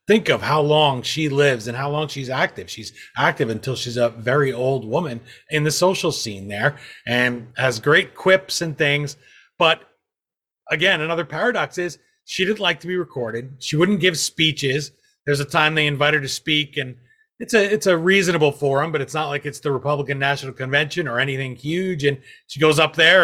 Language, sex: English, male